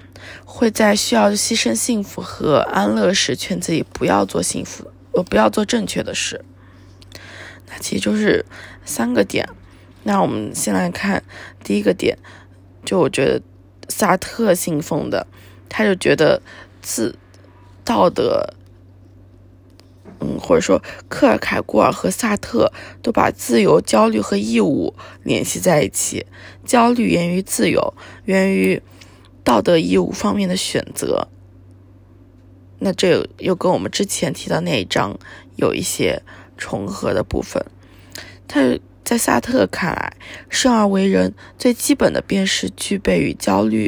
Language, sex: Chinese, female